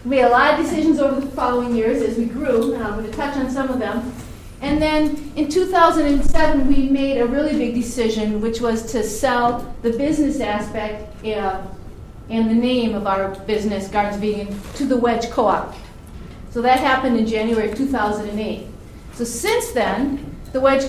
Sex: female